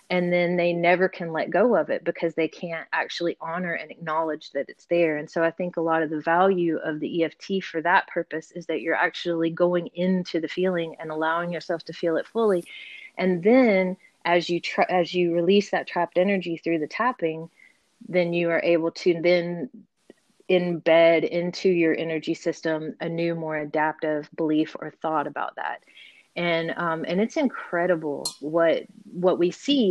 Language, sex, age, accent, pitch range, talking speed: English, female, 30-49, American, 165-185 Hz, 185 wpm